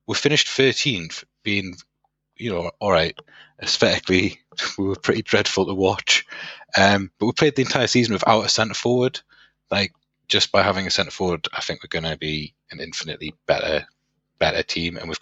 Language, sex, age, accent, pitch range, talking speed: English, male, 20-39, British, 85-105 Hz, 180 wpm